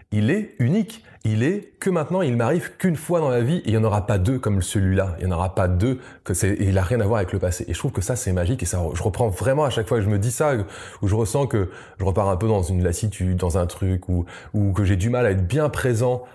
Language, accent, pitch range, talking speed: French, French, 95-125 Hz, 300 wpm